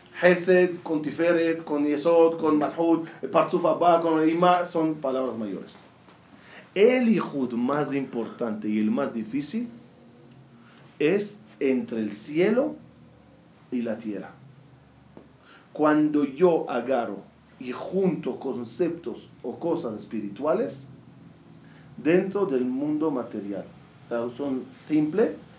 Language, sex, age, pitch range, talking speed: Spanish, male, 40-59, 125-170 Hz, 110 wpm